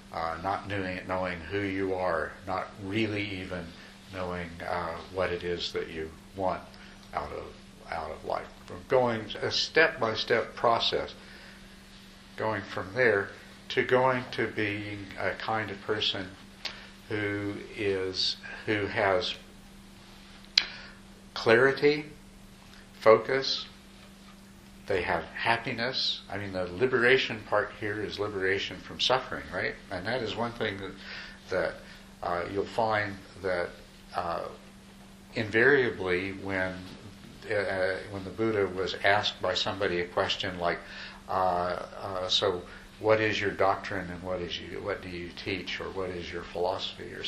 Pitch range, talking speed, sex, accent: 90-105 Hz, 135 wpm, male, American